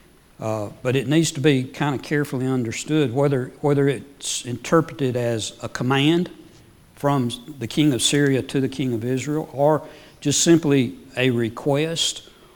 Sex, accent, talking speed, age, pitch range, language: male, American, 160 wpm, 60-79, 120-150 Hz, English